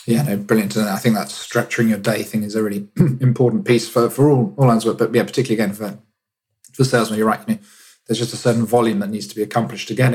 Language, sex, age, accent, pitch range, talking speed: English, male, 20-39, British, 100-120 Hz, 270 wpm